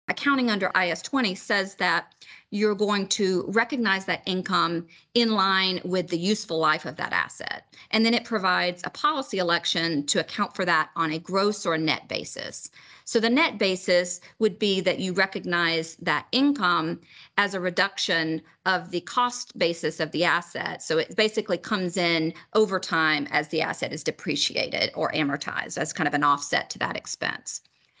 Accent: American